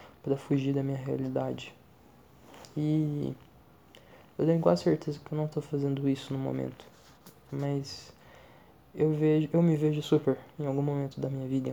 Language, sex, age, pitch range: Portuguese, male, 20-39, 125-145 Hz